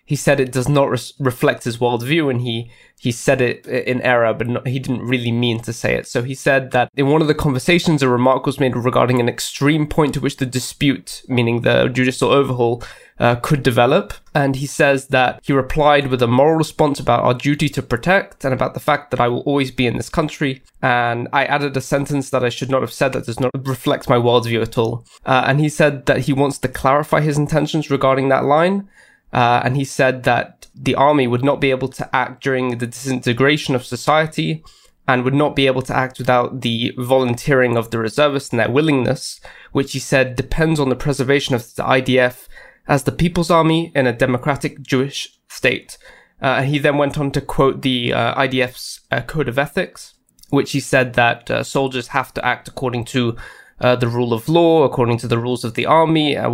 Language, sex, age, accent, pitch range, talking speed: English, male, 20-39, British, 125-145 Hz, 215 wpm